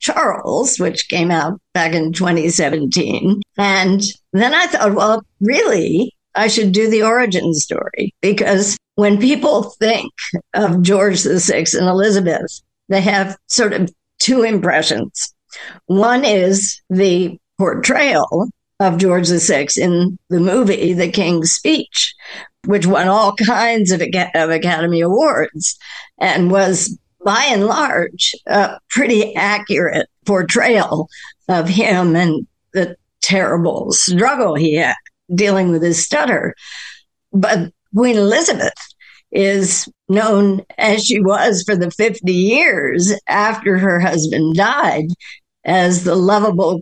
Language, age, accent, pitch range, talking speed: English, 60-79, American, 175-210 Hz, 120 wpm